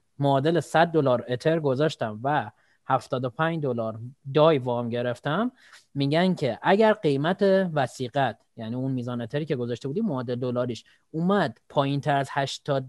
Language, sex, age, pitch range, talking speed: Persian, male, 30-49, 125-165 Hz, 130 wpm